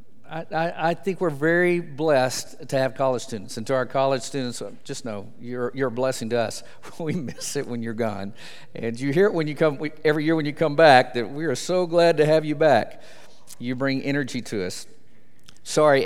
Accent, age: American, 50-69